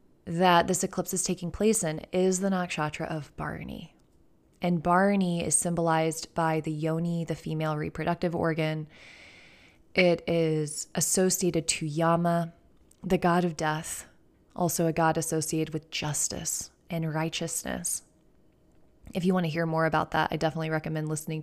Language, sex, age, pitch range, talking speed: English, female, 20-39, 160-180 Hz, 145 wpm